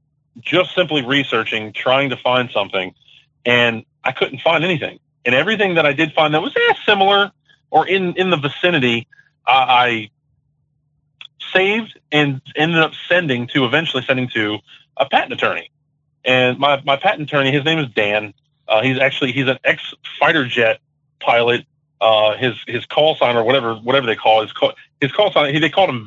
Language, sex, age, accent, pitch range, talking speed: English, male, 30-49, American, 125-155 Hz, 180 wpm